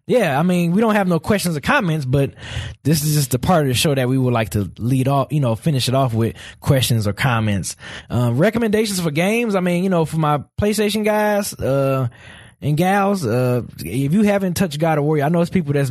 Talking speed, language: 240 wpm, English